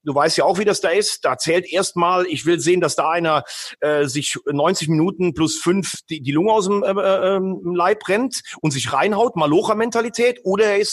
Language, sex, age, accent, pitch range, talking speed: German, male, 30-49, German, 150-195 Hz, 215 wpm